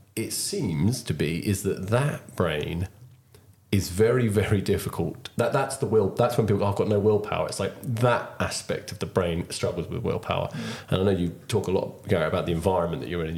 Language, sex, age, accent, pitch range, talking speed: English, male, 30-49, British, 95-115 Hz, 225 wpm